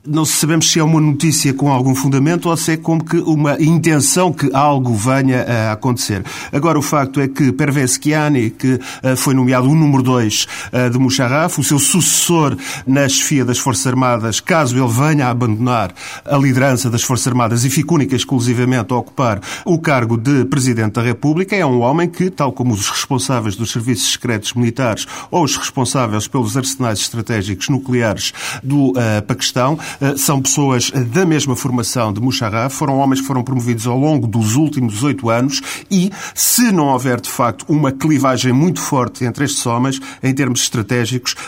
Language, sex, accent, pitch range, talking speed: Portuguese, male, Portuguese, 125-150 Hz, 175 wpm